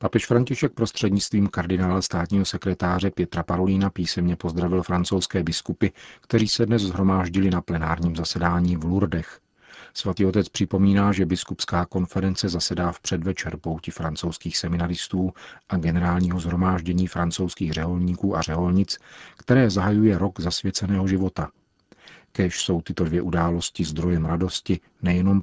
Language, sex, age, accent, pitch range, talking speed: Czech, male, 40-59, native, 85-100 Hz, 125 wpm